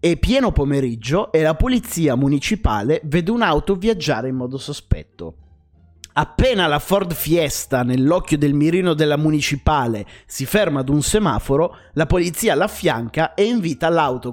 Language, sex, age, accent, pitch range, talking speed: Italian, male, 30-49, native, 120-175 Hz, 140 wpm